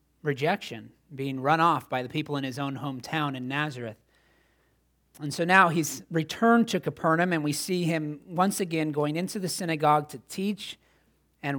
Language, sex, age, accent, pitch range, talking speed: English, male, 30-49, American, 120-155 Hz, 170 wpm